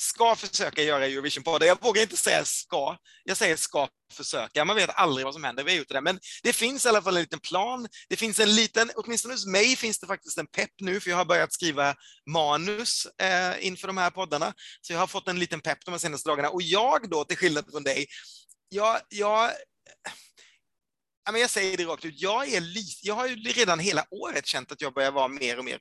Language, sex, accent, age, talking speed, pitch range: Swedish, male, native, 30-49, 230 wpm, 145-205 Hz